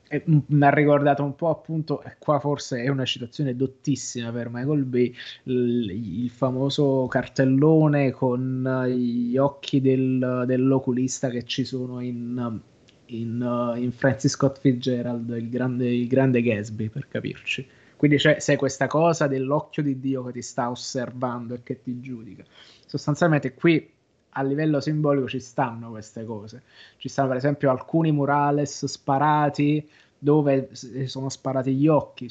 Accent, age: native, 20-39